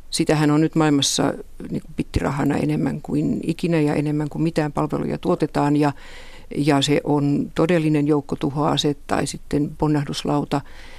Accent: native